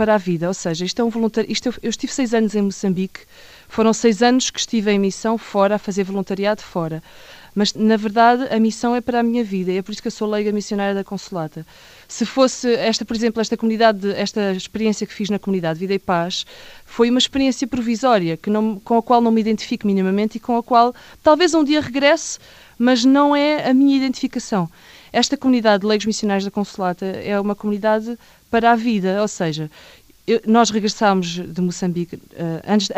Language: Portuguese